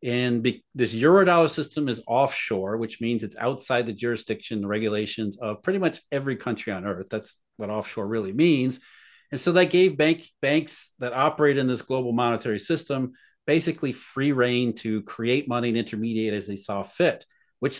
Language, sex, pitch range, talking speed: English, male, 115-150 Hz, 180 wpm